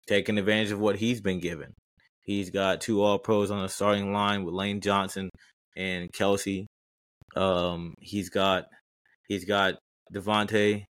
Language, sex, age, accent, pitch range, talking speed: English, male, 20-39, American, 90-105 Hz, 150 wpm